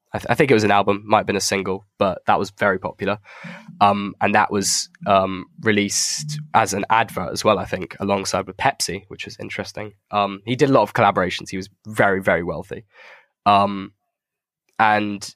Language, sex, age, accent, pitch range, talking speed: English, male, 10-29, British, 95-105 Hz, 200 wpm